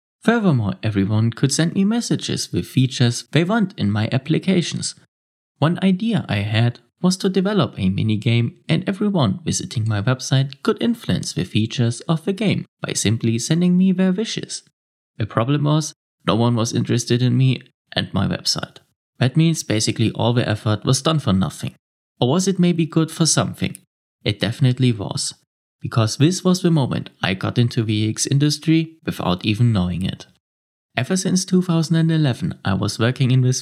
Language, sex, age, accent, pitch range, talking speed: English, male, 30-49, German, 115-170 Hz, 170 wpm